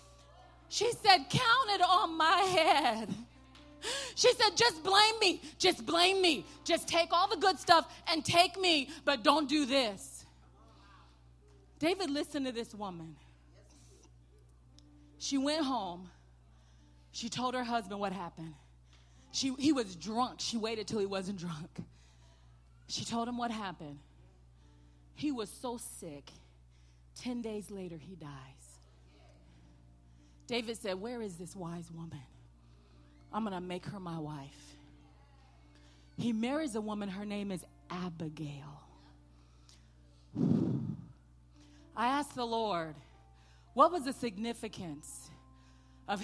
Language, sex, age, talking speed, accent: English, female, 30-49, 125 wpm, American